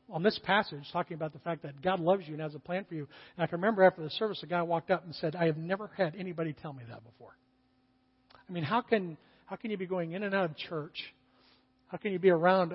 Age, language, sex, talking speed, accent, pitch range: 50-69, English, male, 275 wpm, American, 150-200 Hz